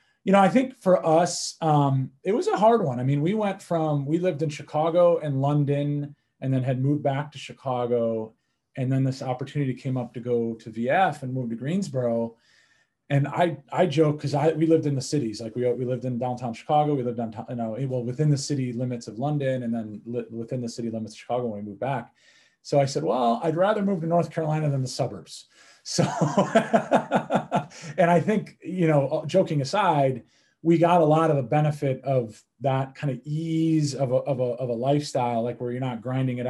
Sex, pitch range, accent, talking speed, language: male, 120-155 Hz, American, 220 wpm, English